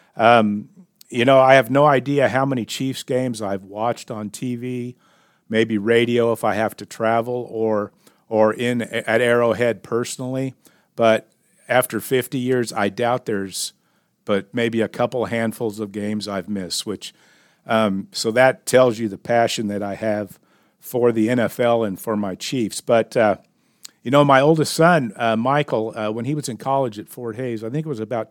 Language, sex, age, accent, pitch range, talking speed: English, male, 50-69, American, 110-125 Hz, 180 wpm